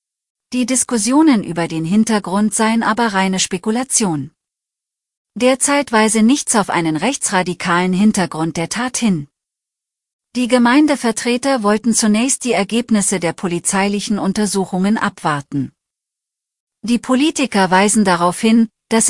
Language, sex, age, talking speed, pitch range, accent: German, female, 40-59, 110 wpm, 180-230 Hz, German